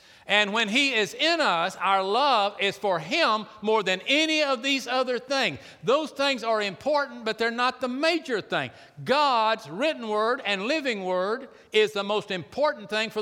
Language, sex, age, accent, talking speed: English, male, 60-79, American, 180 wpm